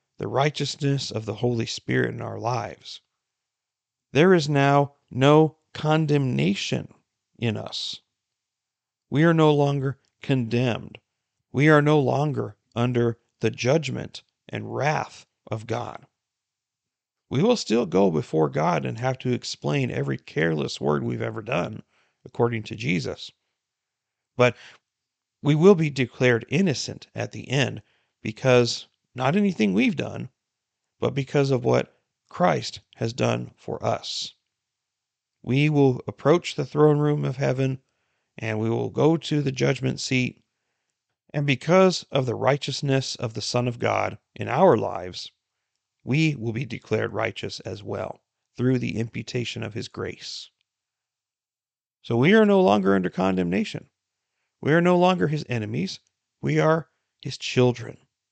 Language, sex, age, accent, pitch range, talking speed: English, male, 40-59, American, 115-140 Hz, 135 wpm